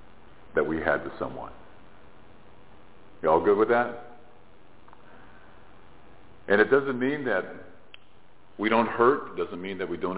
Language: English